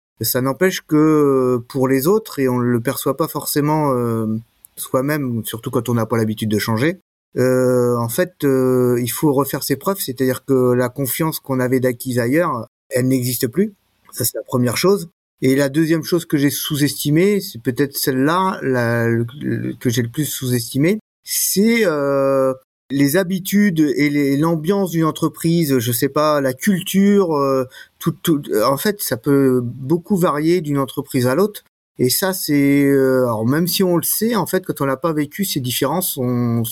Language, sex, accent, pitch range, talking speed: French, male, French, 125-165 Hz, 185 wpm